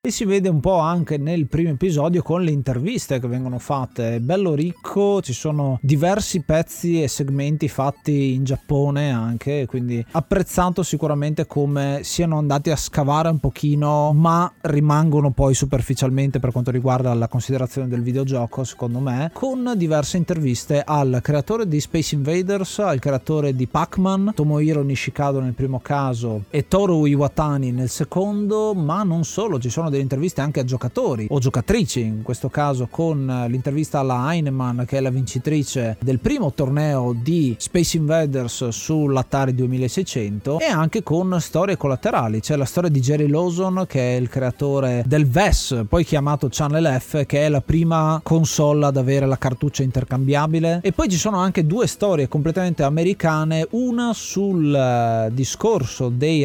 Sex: male